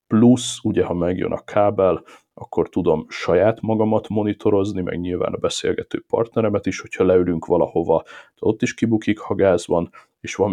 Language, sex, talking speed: Hungarian, male, 160 wpm